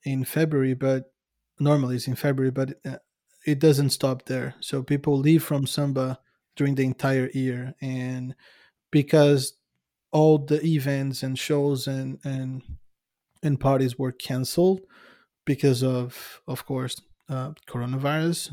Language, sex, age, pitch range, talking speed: English, male, 20-39, 130-145 Hz, 130 wpm